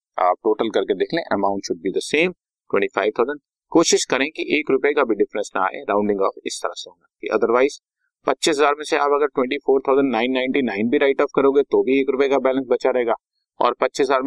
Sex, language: male, Hindi